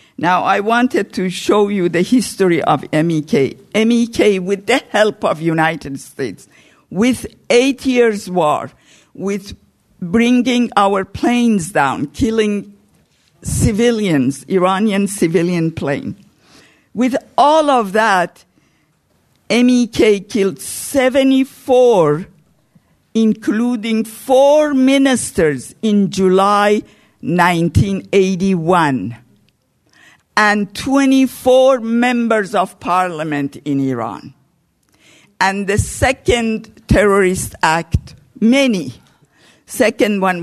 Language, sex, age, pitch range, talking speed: English, female, 50-69, 175-235 Hz, 90 wpm